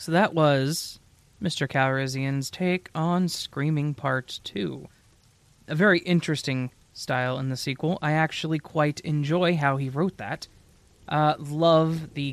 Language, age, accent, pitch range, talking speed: English, 20-39, American, 125-155 Hz, 135 wpm